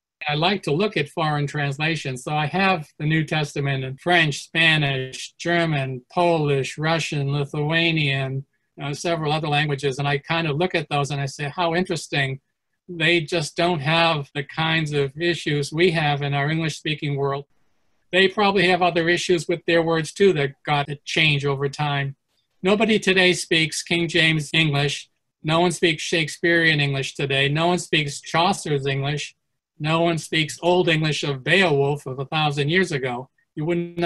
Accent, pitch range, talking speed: American, 145-175 Hz, 170 wpm